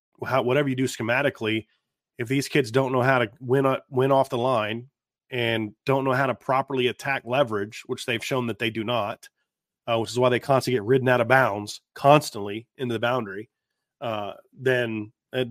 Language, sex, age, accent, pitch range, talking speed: English, male, 30-49, American, 120-135 Hz, 195 wpm